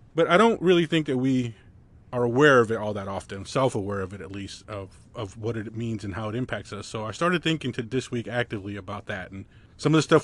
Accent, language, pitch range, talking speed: American, English, 110-140 Hz, 260 wpm